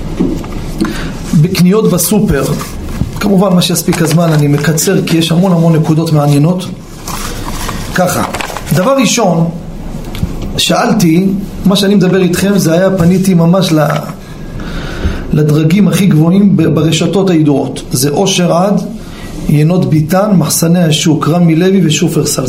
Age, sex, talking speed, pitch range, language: 40-59, male, 110 wpm, 155-190 Hz, Hebrew